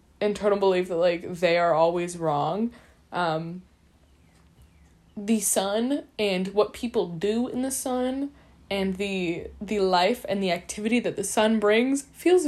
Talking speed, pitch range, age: 145 wpm, 180-235 Hz, 10-29